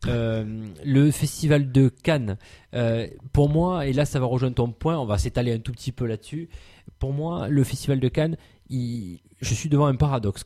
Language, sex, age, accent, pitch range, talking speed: French, male, 20-39, French, 110-135 Hz, 205 wpm